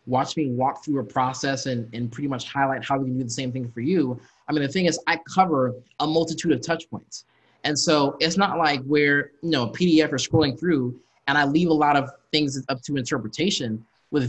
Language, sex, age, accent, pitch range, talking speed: English, male, 20-39, American, 130-165 Hz, 230 wpm